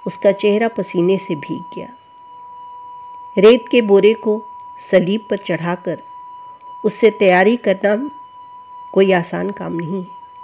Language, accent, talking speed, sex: Hindi, native, 115 wpm, female